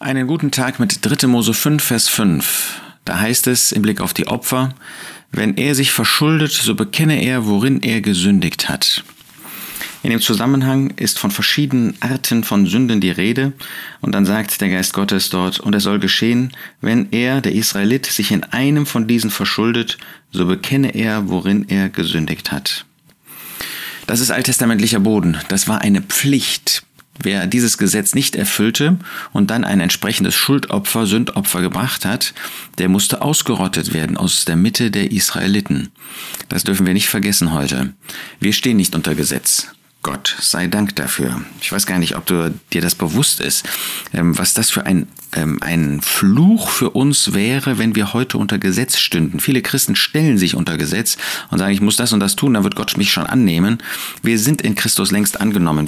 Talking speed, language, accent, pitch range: 180 wpm, German, German, 95-135 Hz